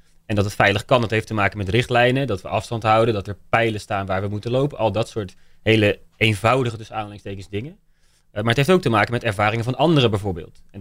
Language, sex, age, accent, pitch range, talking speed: Dutch, male, 20-39, Dutch, 105-130 Hz, 240 wpm